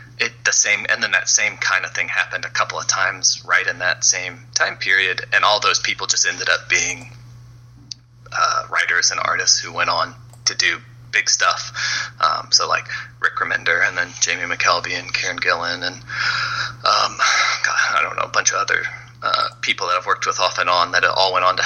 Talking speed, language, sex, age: 215 wpm, English, male, 20-39